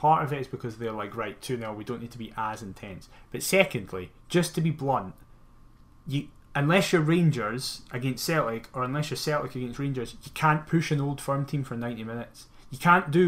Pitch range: 120-155 Hz